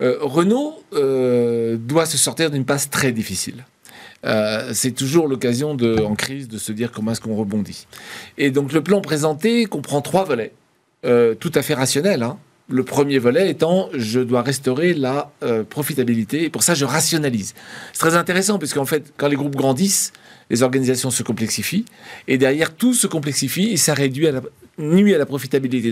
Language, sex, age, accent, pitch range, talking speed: French, male, 40-59, French, 125-170 Hz, 190 wpm